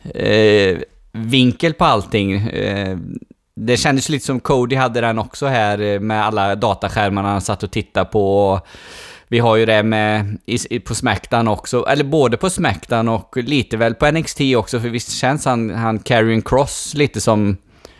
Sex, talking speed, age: male, 175 wpm, 20-39